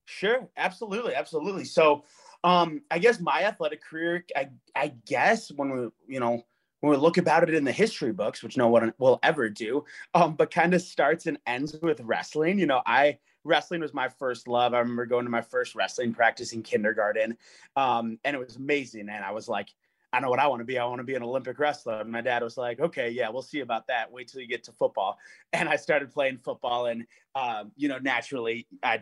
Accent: American